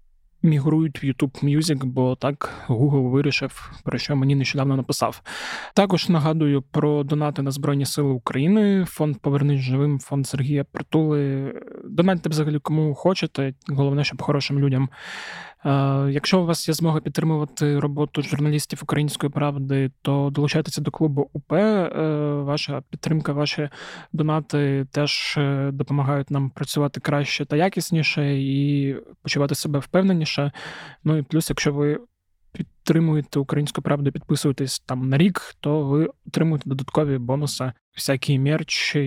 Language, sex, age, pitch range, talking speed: Ukrainian, male, 20-39, 140-160 Hz, 130 wpm